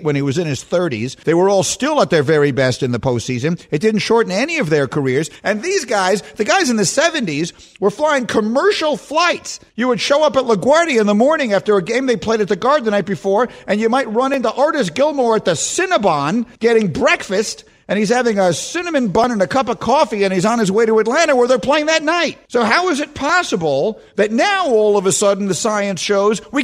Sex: male